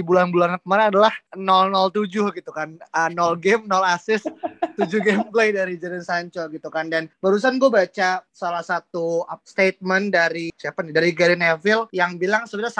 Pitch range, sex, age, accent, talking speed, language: 170-205 Hz, male, 20-39, native, 160 wpm, Indonesian